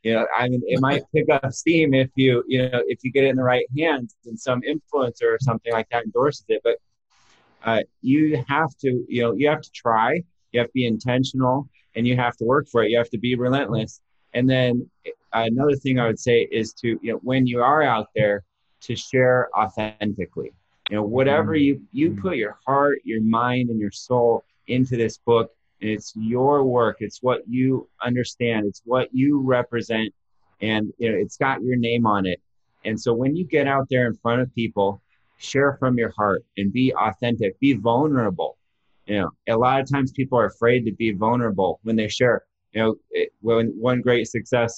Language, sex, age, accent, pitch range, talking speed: English, male, 30-49, American, 110-130 Hz, 210 wpm